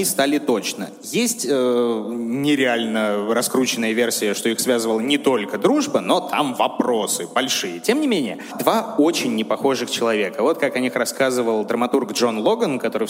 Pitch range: 110-150 Hz